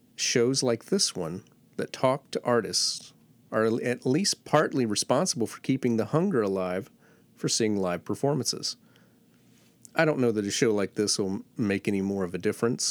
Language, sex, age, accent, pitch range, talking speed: English, male, 40-59, American, 105-140 Hz, 170 wpm